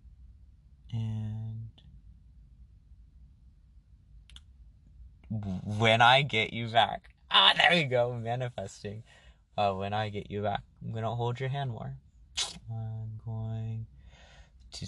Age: 20-39